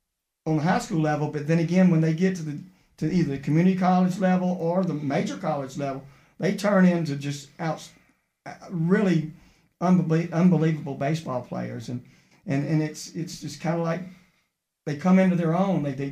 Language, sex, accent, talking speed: English, male, American, 190 wpm